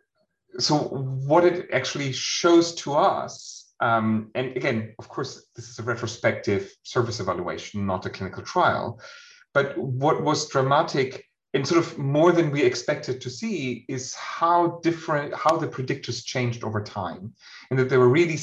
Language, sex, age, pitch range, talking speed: English, male, 30-49, 115-150 Hz, 160 wpm